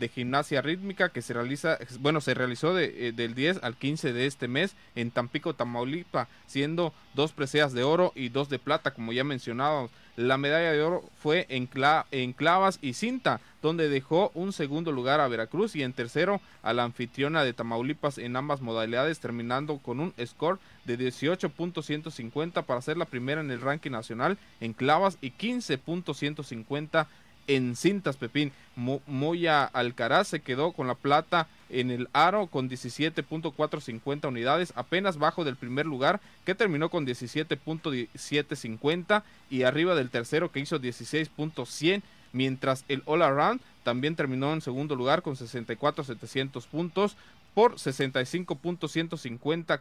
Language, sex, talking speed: Spanish, male, 150 wpm